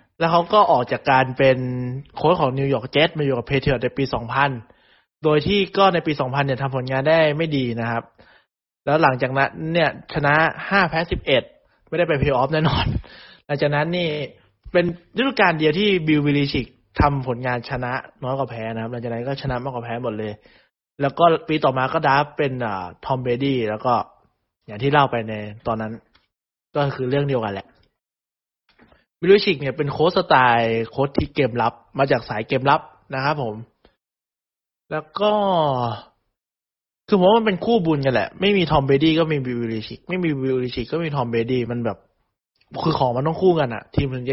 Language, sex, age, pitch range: Thai, male, 20-39, 125-170 Hz